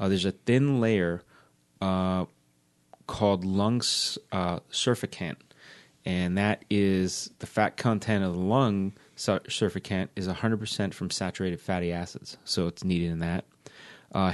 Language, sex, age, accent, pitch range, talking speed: English, male, 30-49, American, 90-105 Hz, 130 wpm